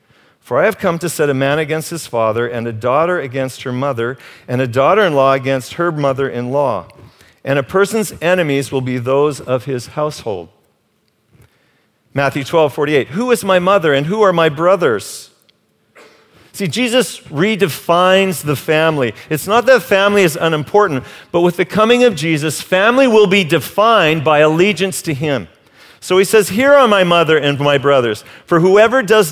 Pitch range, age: 140-195 Hz, 50-69